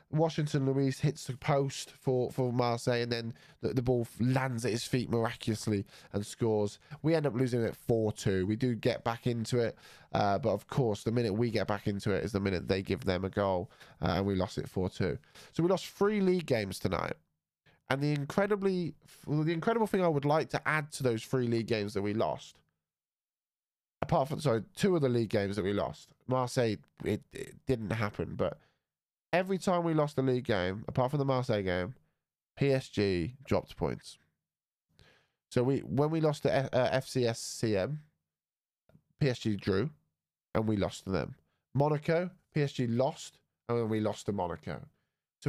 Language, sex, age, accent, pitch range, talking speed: English, male, 10-29, British, 110-145 Hz, 185 wpm